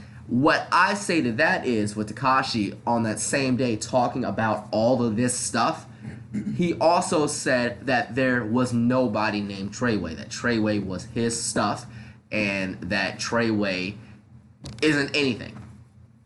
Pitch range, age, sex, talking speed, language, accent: 110-130 Hz, 20-39, male, 135 wpm, English, American